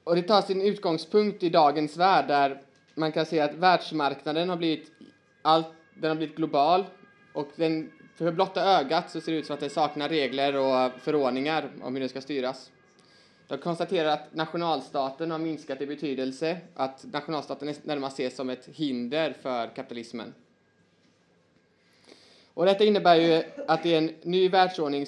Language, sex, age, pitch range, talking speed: Swedish, male, 20-39, 130-160 Hz, 165 wpm